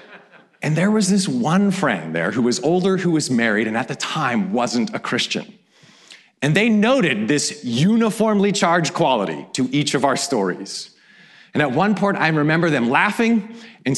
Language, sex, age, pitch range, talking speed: English, male, 40-59, 160-215 Hz, 175 wpm